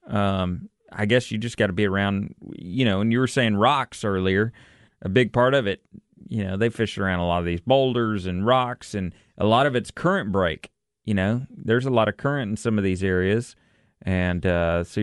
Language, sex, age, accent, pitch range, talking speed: English, male, 30-49, American, 100-135 Hz, 225 wpm